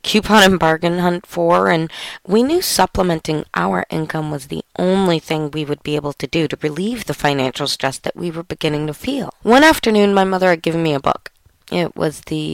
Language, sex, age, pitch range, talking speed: English, female, 30-49, 155-205 Hz, 210 wpm